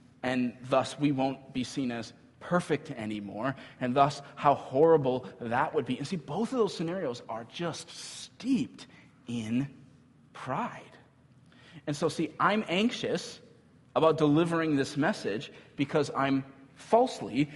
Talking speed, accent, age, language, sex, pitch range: 135 wpm, American, 30-49, English, male, 130-170 Hz